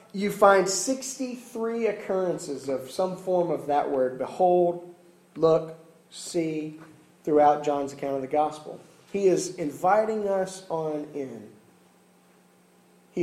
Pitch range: 140-185 Hz